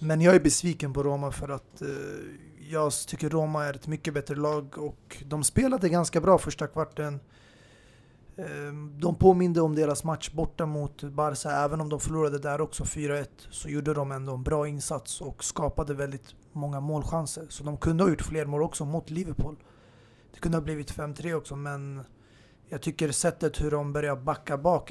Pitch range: 135-155 Hz